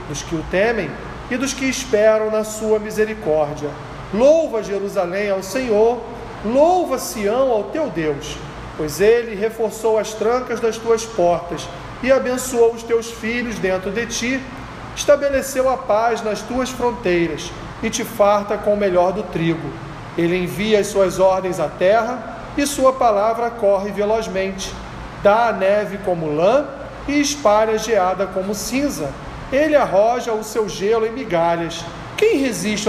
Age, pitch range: 40-59, 180-235 Hz